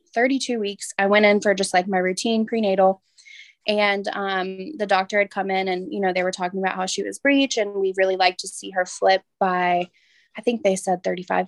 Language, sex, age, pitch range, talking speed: English, female, 20-39, 190-230 Hz, 225 wpm